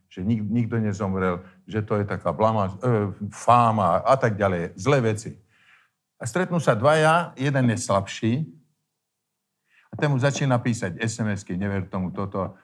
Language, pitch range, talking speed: Slovak, 95-130 Hz, 140 wpm